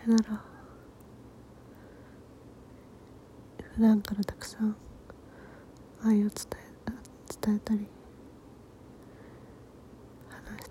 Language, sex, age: Japanese, female, 30-49